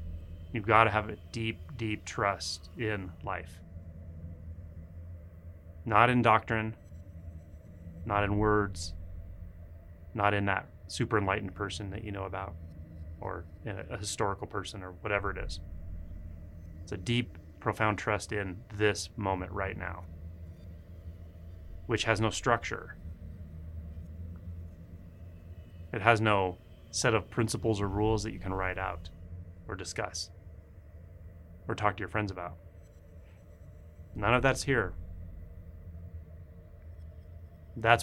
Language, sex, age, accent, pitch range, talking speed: English, male, 30-49, American, 85-100 Hz, 115 wpm